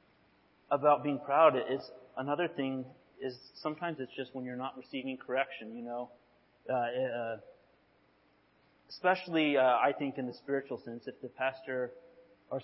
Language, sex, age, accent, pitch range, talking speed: English, male, 30-49, American, 135-175 Hz, 145 wpm